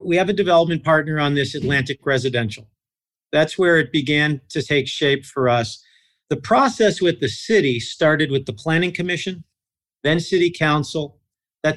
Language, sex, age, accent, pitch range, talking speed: English, male, 50-69, American, 135-175 Hz, 165 wpm